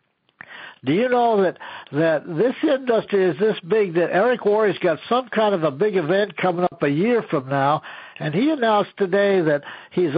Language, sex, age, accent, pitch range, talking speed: English, male, 60-79, American, 165-215 Hz, 190 wpm